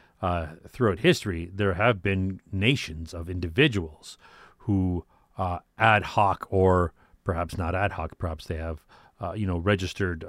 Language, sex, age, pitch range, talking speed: English, male, 40-59, 90-110 Hz, 145 wpm